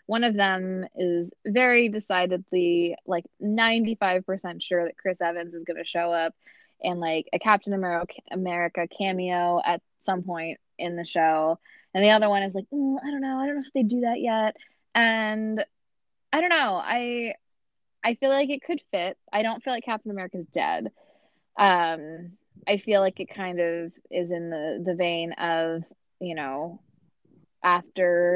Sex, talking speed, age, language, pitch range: female, 175 wpm, 20-39, English, 170-225 Hz